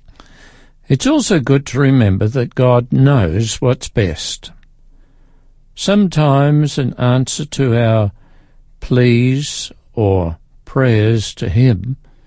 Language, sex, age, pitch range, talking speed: English, male, 60-79, 105-140 Hz, 100 wpm